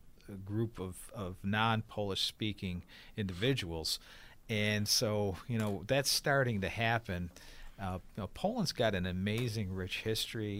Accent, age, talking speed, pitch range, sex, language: American, 50-69, 130 wpm, 95-110 Hz, male, English